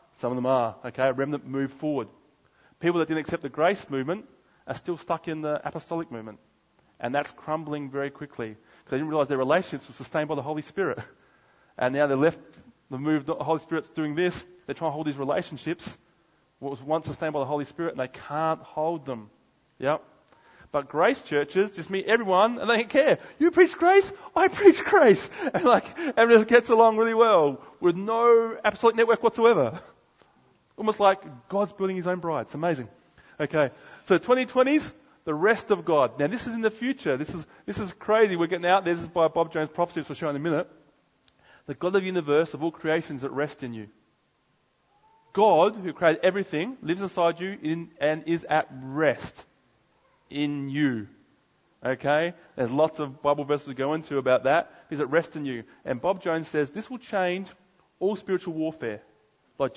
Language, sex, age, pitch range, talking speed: English, male, 30-49, 145-195 Hz, 195 wpm